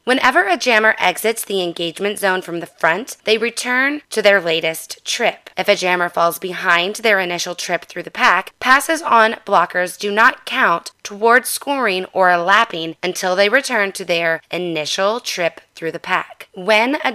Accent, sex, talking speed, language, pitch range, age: American, female, 170 wpm, English, 180-230 Hz, 20-39